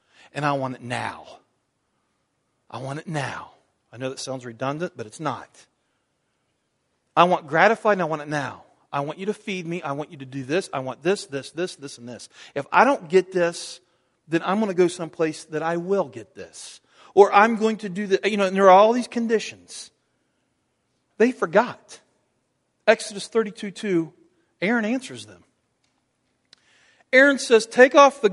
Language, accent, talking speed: English, American, 185 wpm